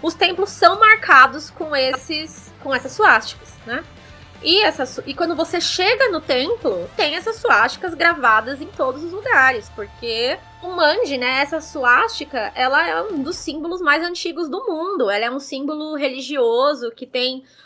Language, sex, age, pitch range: Portuguese, female, 10-29, 260-350 Hz